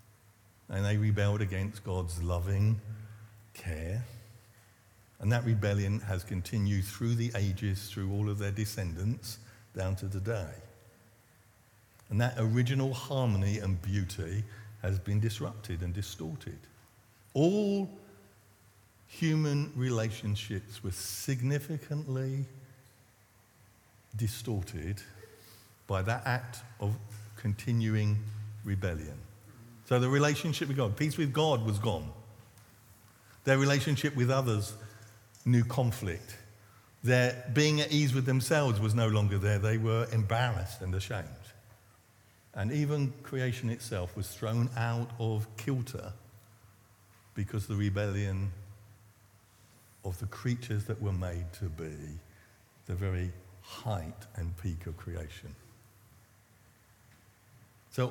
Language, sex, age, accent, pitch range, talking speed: English, male, 50-69, British, 100-120 Hz, 110 wpm